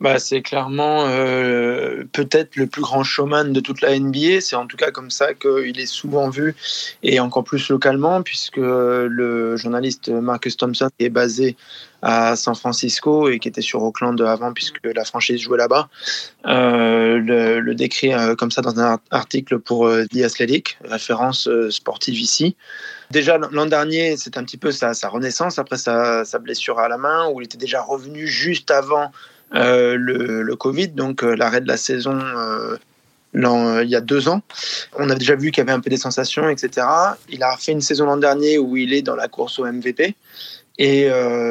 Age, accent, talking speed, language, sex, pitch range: 20-39, French, 200 wpm, French, male, 120-145 Hz